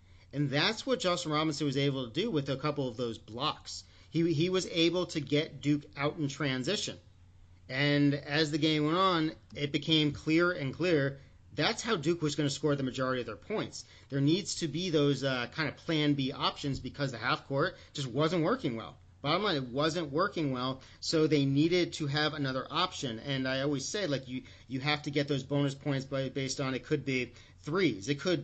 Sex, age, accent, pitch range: male, 40-59, American, 135-160 Hz